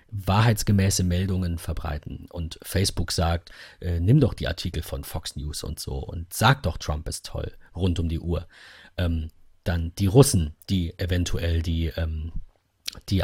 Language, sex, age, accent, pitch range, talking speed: German, male, 40-59, German, 85-100 Hz, 155 wpm